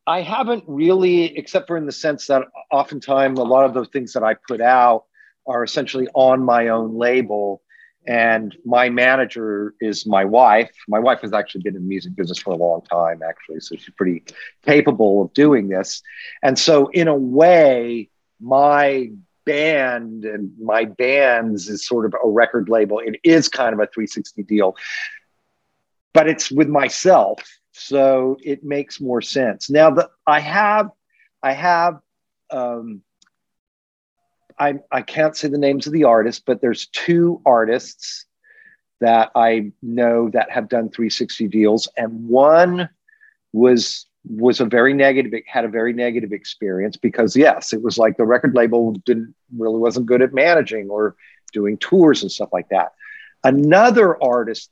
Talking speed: 160 wpm